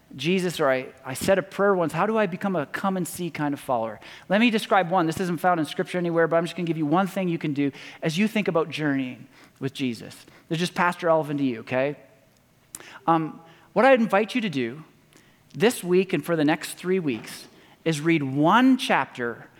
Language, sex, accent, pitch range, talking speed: English, male, American, 155-205 Hz, 225 wpm